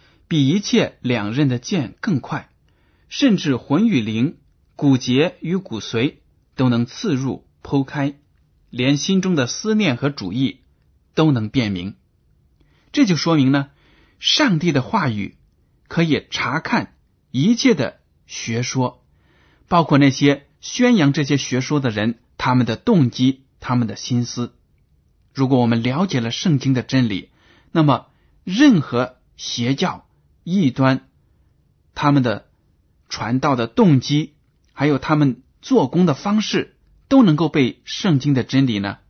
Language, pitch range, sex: Chinese, 115-145 Hz, male